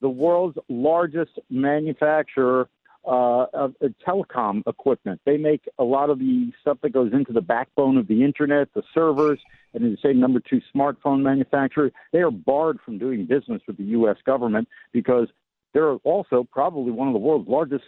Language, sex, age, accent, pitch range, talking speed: English, male, 50-69, American, 130-175 Hz, 170 wpm